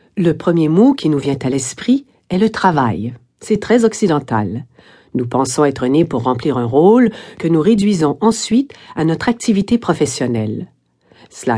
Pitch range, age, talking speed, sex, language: 125-205 Hz, 50-69, 160 wpm, female, French